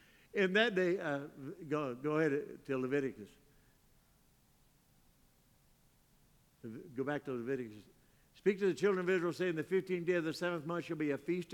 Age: 60-79